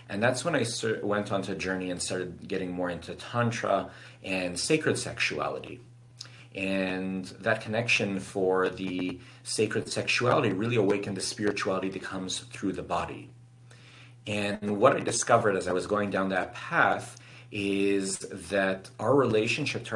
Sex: male